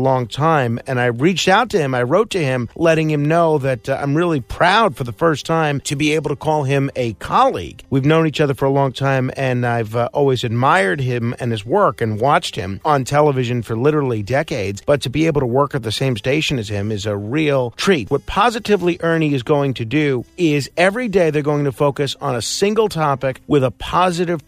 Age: 40-59